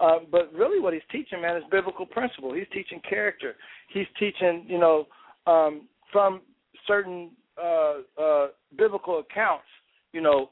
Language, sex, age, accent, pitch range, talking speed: English, male, 60-79, American, 155-200 Hz, 150 wpm